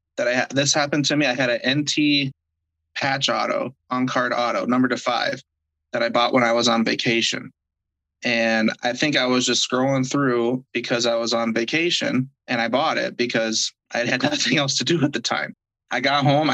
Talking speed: 195 wpm